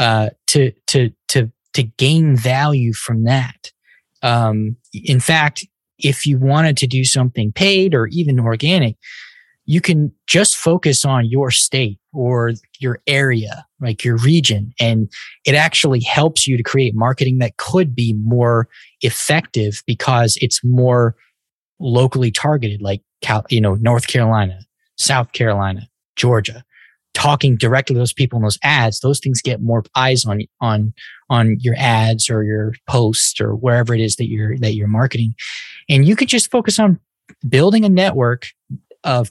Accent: American